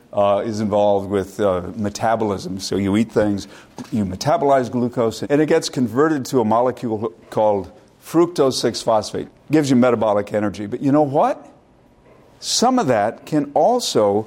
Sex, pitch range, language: male, 105-135 Hz, English